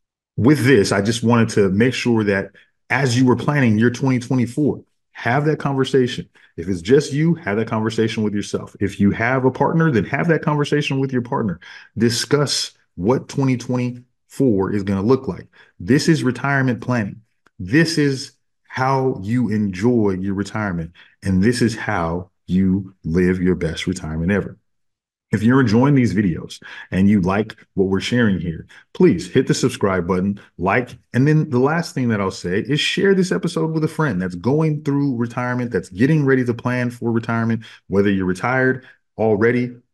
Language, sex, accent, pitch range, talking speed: English, male, American, 95-130 Hz, 175 wpm